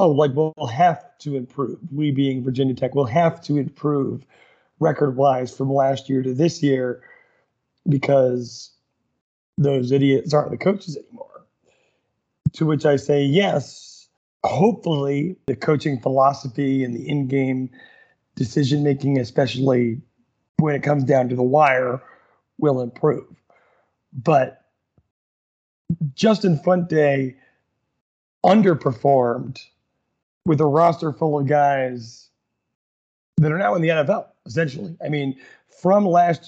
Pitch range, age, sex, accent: 135-165 Hz, 30-49, male, American